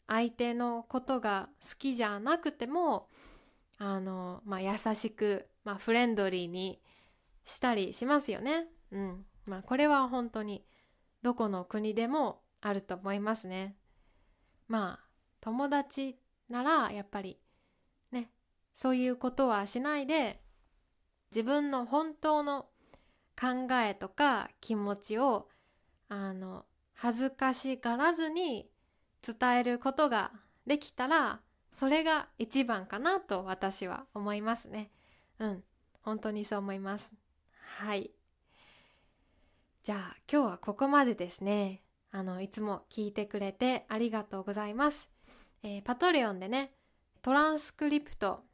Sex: female